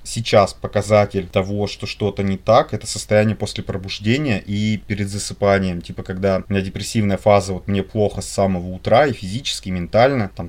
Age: 20-39